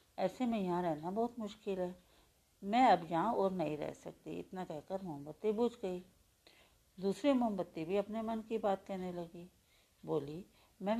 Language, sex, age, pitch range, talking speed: Hindi, female, 50-69, 170-210 Hz, 165 wpm